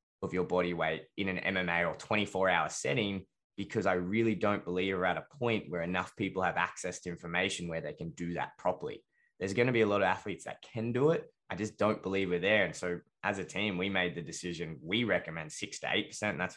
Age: 20-39